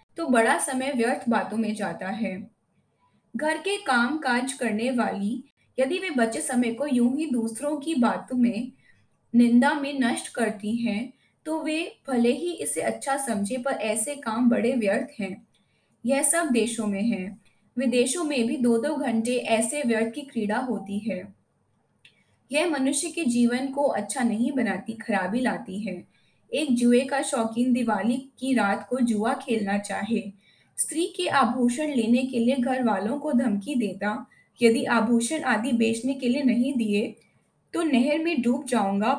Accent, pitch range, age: native, 220-275 Hz, 20-39